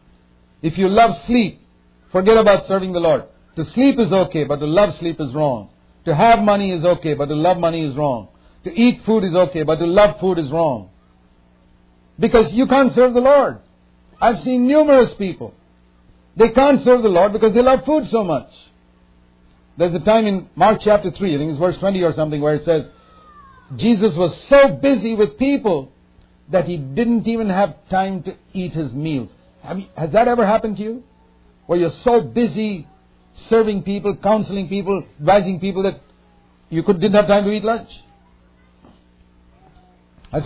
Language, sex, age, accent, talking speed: English, male, 50-69, Indian, 180 wpm